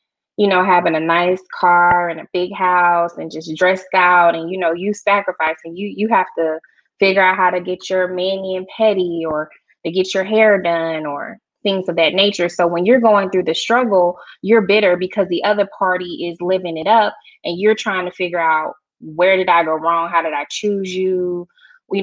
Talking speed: 210 wpm